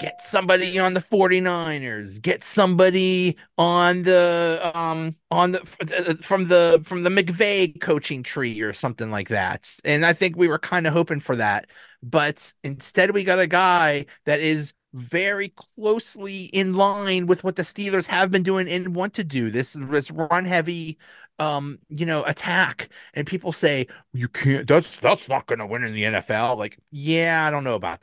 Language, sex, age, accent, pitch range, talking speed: English, male, 30-49, American, 130-180 Hz, 180 wpm